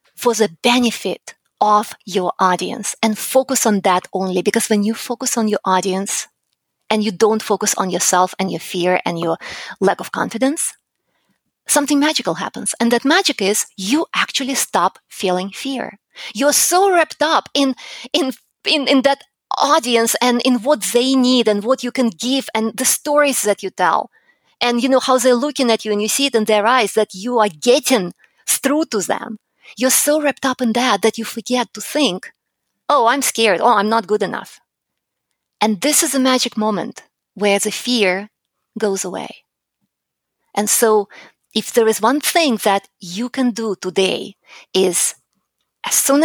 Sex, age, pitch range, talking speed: female, 20-39, 205-260 Hz, 180 wpm